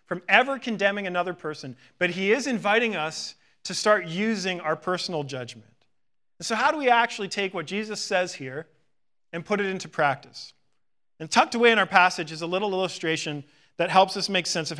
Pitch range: 165-230 Hz